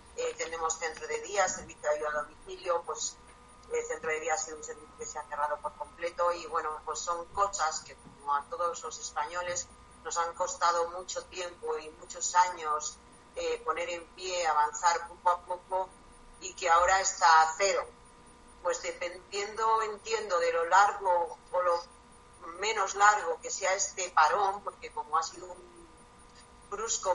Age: 40-59